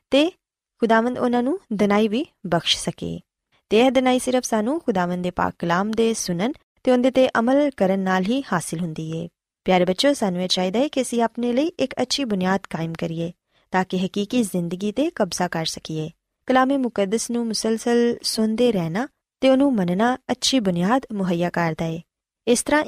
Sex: female